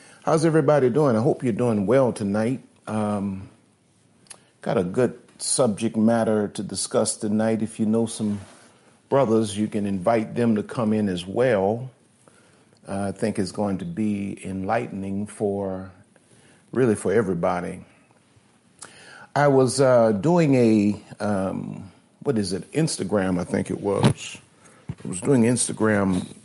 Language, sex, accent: English, male, American